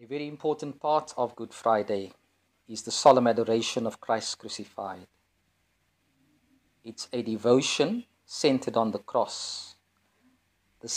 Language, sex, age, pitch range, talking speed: English, male, 50-69, 90-120 Hz, 120 wpm